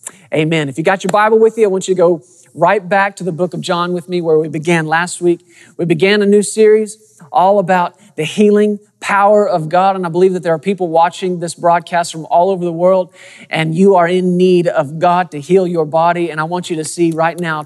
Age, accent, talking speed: 40-59, American, 250 wpm